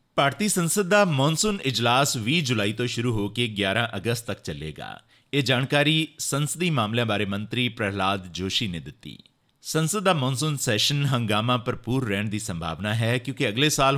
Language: Punjabi